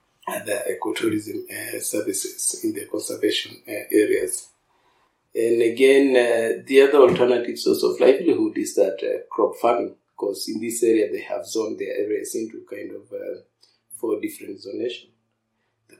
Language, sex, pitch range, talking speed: English, male, 330-445 Hz, 150 wpm